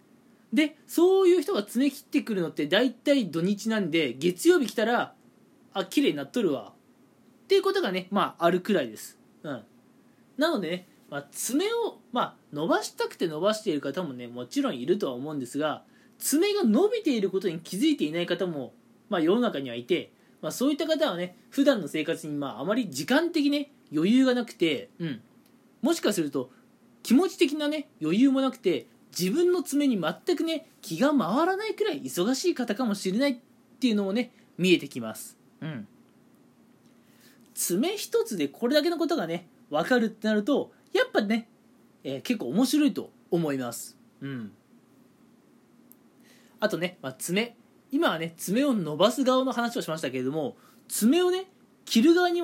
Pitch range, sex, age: 180-290 Hz, male, 20-39